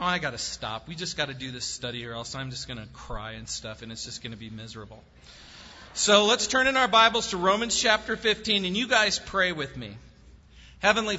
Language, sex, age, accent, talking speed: English, male, 40-59, American, 240 wpm